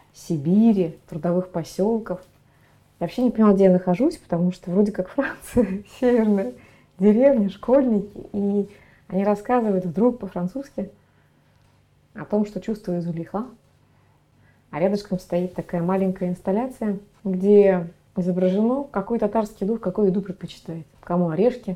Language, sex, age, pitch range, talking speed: Russian, female, 20-39, 180-225 Hz, 120 wpm